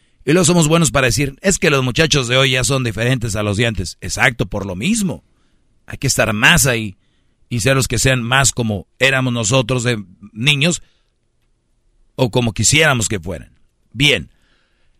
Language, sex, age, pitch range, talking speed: Spanish, male, 50-69, 115-135 Hz, 180 wpm